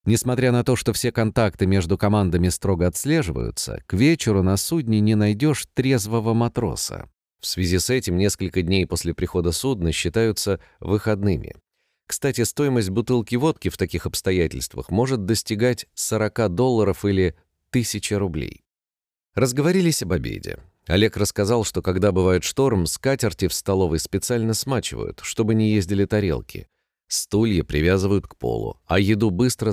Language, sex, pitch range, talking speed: Russian, male, 90-115 Hz, 135 wpm